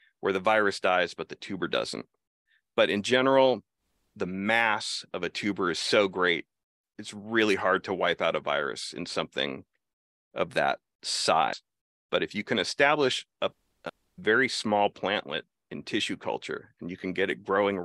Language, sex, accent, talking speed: English, male, American, 170 wpm